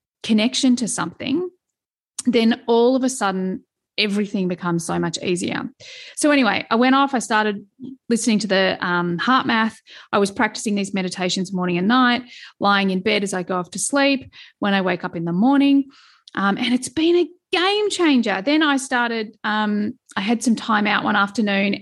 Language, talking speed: English, 185 wpm